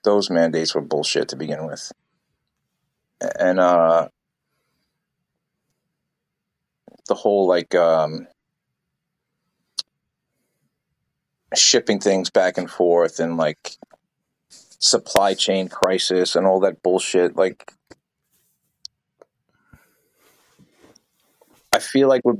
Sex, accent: male, American